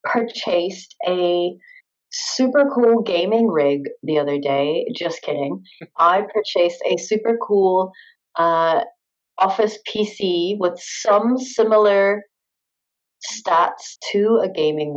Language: English